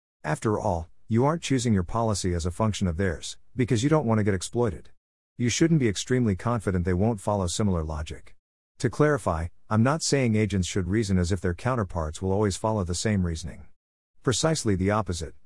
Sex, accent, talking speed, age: male, American, 195 wpm, 50-69